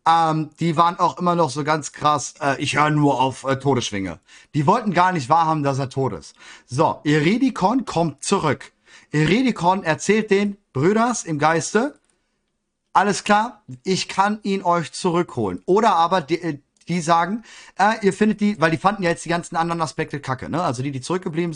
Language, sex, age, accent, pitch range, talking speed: German, male, 40-59, German, 130-180 Hz, 185 wpm